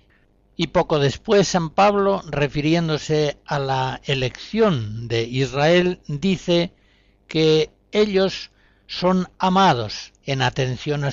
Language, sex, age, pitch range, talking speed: Spanish, male, 60-79, 120-170 Hz, 100 wpm